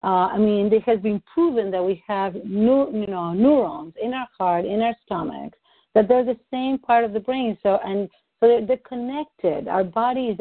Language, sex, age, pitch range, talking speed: English, female, 50-69, 180-245 Hz, 200 wpm